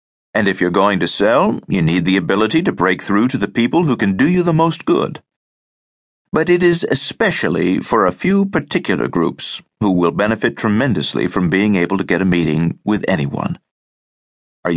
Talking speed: 185 wpm